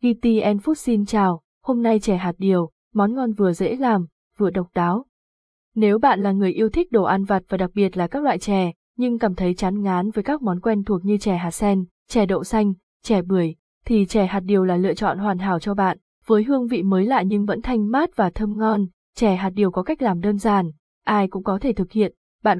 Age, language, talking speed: 20-39, Vietnamese, 240 wpm